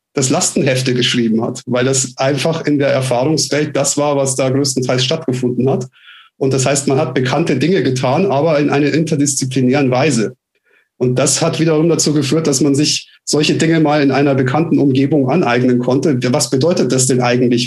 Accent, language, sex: German, German, male